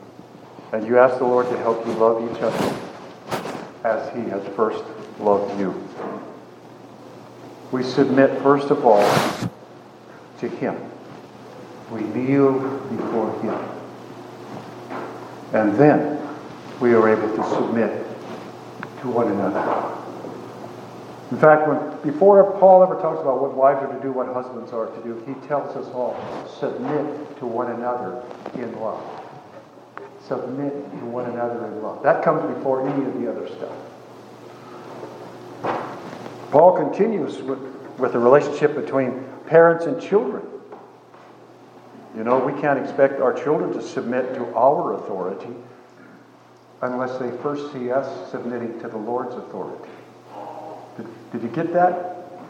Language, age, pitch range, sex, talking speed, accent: English, 50-69, 115-145 Hz, male, 135 wpm, American